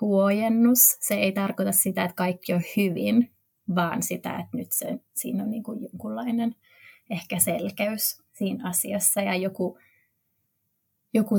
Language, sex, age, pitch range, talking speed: Finnish, female, 20-39, 180-220 Hz, 130 wpm